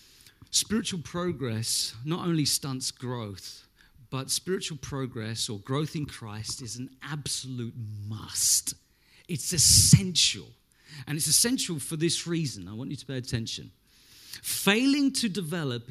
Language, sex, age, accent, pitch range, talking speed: English, male, 40-59, British, 130-210 Hz, 130 wpm